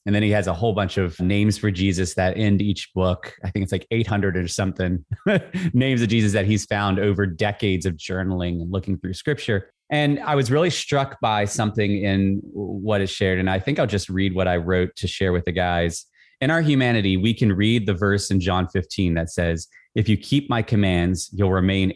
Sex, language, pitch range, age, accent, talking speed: male, English, 95-115 Hz, 30-49, American, 220 wpm